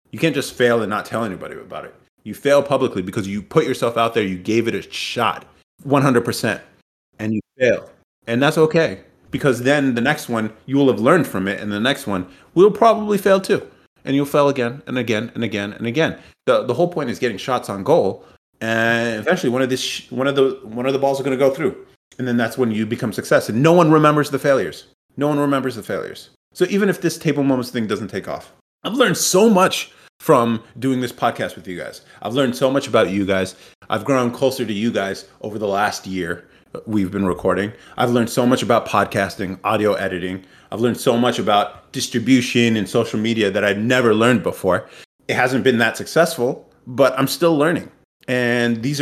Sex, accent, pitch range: male, American, 110-140 Hz